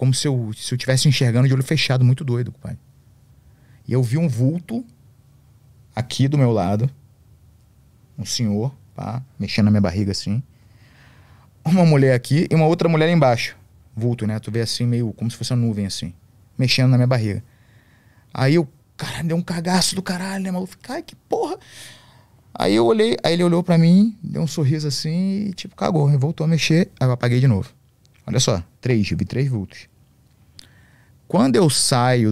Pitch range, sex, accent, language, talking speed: 105-135 Hz, male, Brazilian, Portuguese, 190 wpm